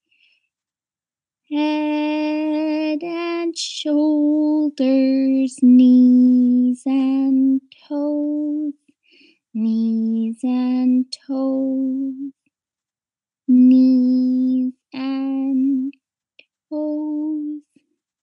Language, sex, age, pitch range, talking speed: English, female, 20-39, 240-300 Hz, 40 wpm